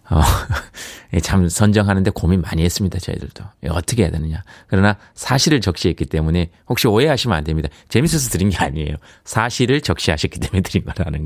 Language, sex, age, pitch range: Korean, male, 30-49, 85-125 Hz